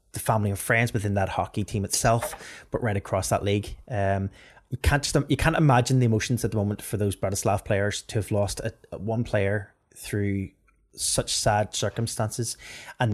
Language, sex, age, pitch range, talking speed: English, male, 20-39, 100-115 Hz, 185 wpm